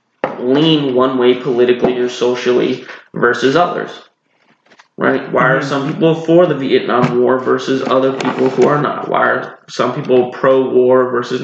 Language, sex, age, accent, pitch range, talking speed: English, male, 20-39, American, 125-140 Hz, 150 wpm